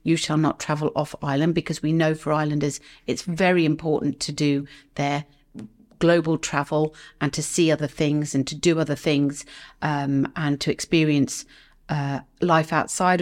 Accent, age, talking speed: British, 40-59, 165 wpm